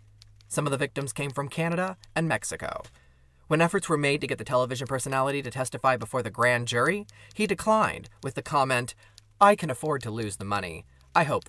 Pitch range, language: 105-145 Hz, English